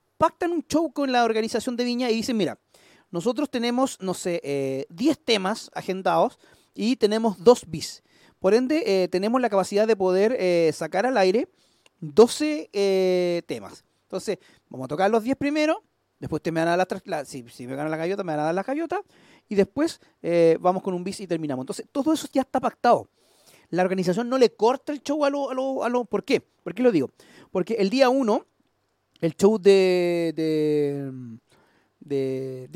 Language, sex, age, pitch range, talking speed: Spanish, male, 40-59, 170-245 Hz, 200 wpm